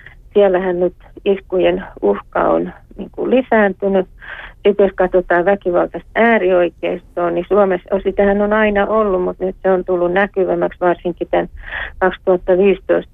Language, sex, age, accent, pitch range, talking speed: Finnish, female, 40-59, native, 175-200 Hz, 130 wpm